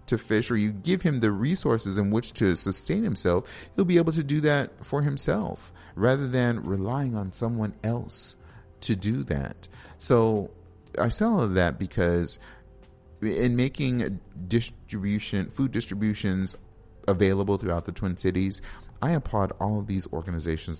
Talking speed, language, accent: 145 wpm, English, American